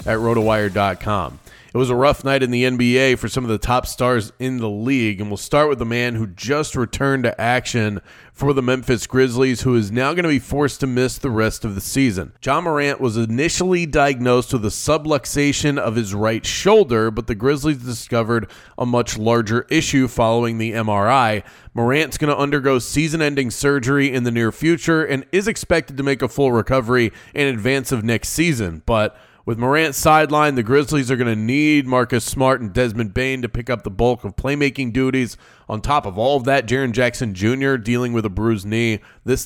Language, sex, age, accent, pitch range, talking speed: English, male, 30-49, American, 115-140 Hz, 200 wpm